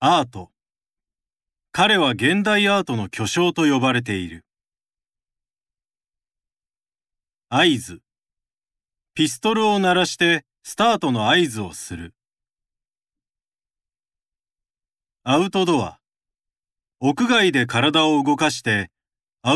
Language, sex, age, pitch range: Japanese, male, 40-59, 110-185 Hz